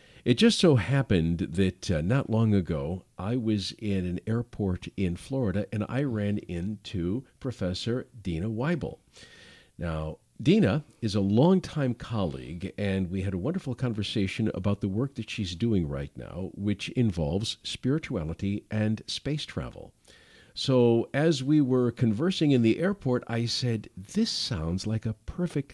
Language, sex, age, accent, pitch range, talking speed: English, male, 50-69, American, 95-130 Hz, 150 wpm